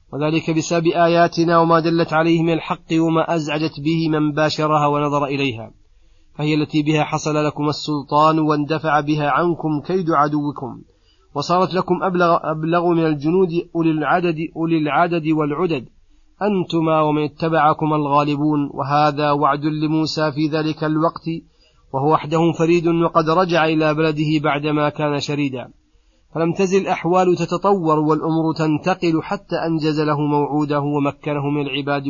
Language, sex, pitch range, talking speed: Arabic, male, 150-165 Hz, 130 wpm